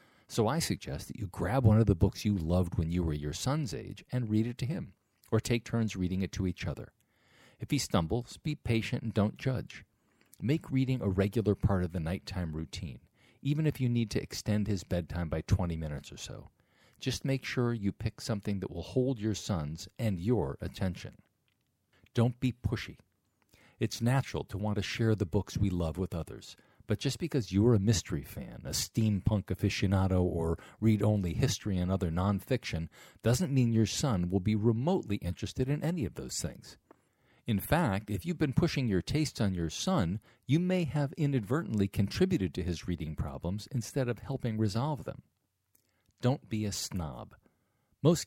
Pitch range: 95-130 Hz